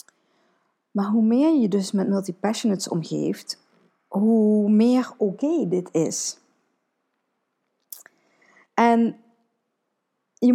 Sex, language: female, Dutch